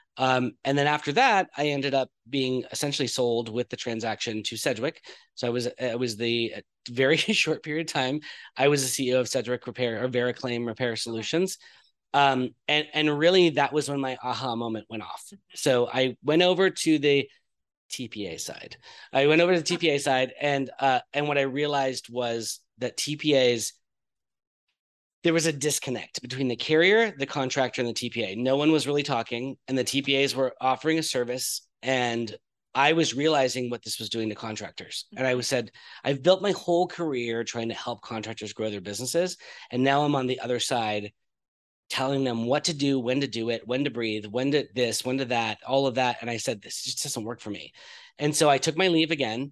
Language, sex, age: English, male, 30-49